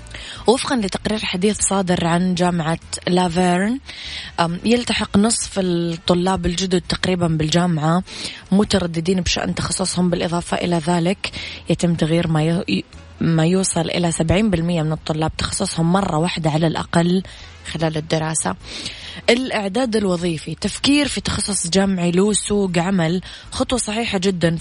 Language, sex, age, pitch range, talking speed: Arabic, female, 20-39, 165-185 Hz, 110 wpm